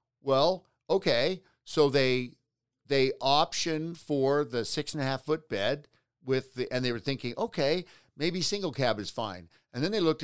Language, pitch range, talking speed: English, 125-155 Hz, 145 wpm